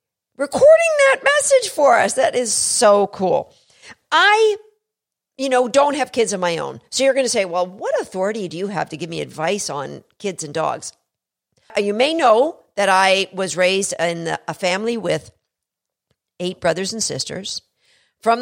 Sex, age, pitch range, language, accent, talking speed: female, 50-69, 180-260 Hz, English, American, 175 wpm